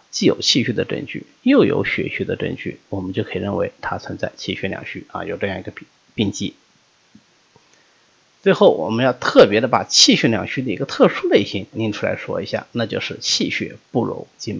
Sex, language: male, Chinese